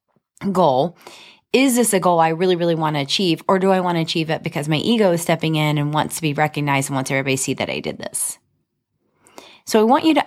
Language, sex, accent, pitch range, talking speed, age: English, female, American, 140-180 Hz, 250 wpm, 30-49